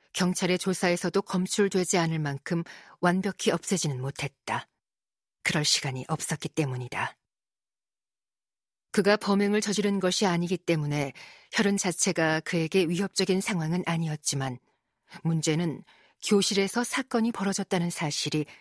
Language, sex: Korean, female